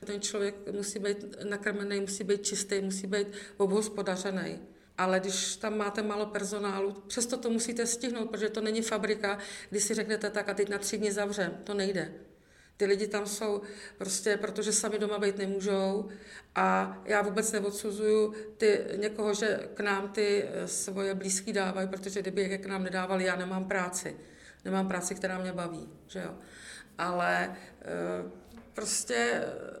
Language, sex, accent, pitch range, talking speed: Czech, female, native, 195-215 Hz, 155 wpm